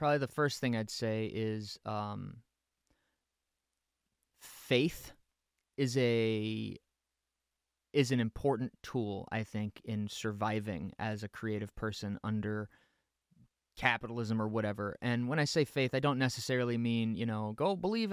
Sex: male